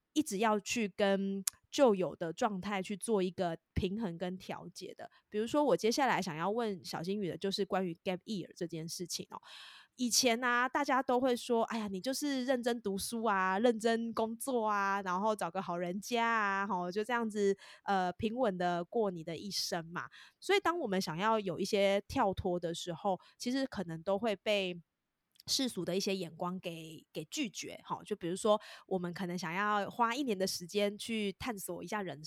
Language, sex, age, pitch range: Chinese, female, 20-39, 180-235 Hz